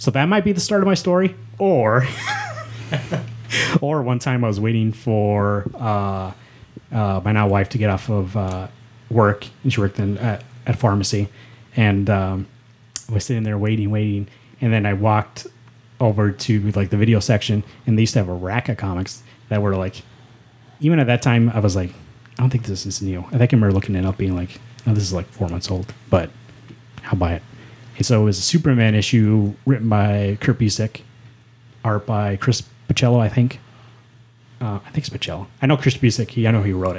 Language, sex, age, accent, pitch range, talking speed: English, male, 30-49, American, 100-125 Hz, 210 wpm